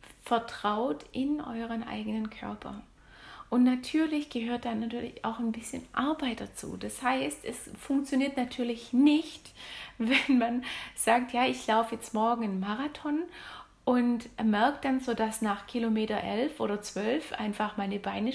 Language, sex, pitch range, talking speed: German, female, 225-275 Hz, 145 wpm